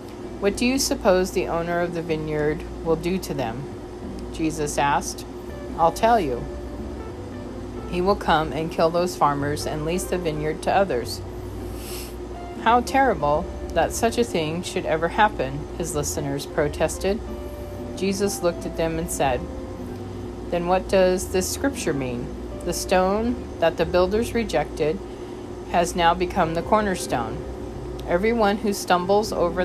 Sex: female